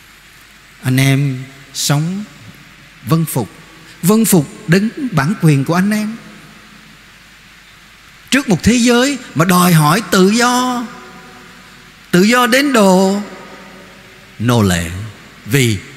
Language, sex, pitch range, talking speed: Vietnamese, male, 140-205 Hz, 110 wpm